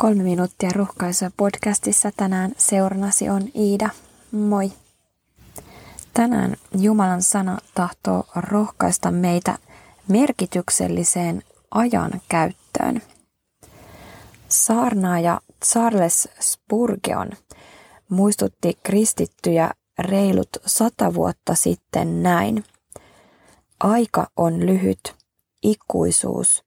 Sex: female